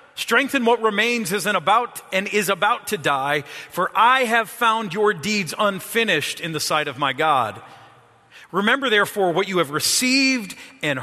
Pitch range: 190-245 Hz